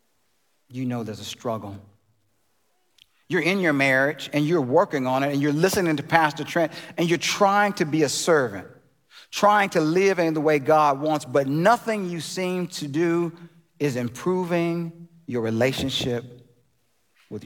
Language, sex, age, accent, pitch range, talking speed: English, male, 40-59, American, 110-150 Hz, 160 wpm